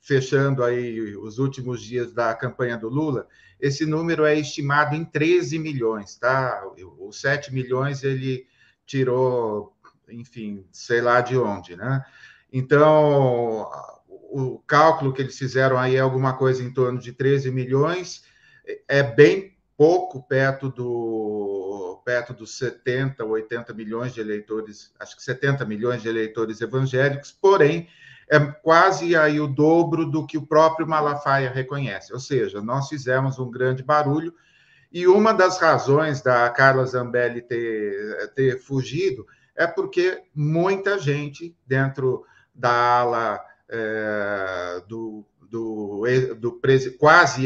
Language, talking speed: Portuguese, 125 wpm